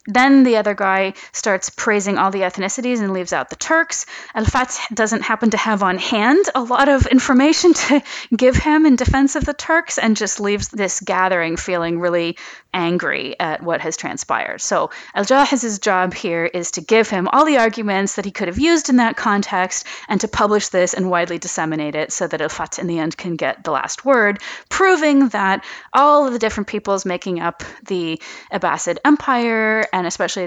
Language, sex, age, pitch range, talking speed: English, female, 30-49, 185-265 Hz, 195 wpm